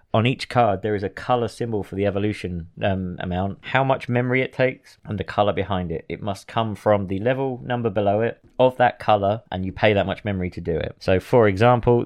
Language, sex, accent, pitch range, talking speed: English, male, British, 100-120 Hz, 235 wpm